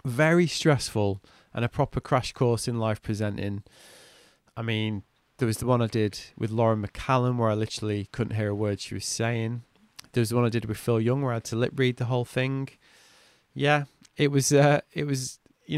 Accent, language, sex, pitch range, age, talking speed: British, English, male, 115-135 Hz, 20-39, 205 wpm